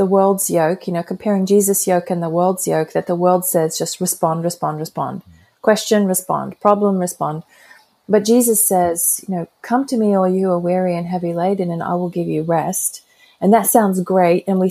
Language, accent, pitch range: English, Australian, 175-205 Hz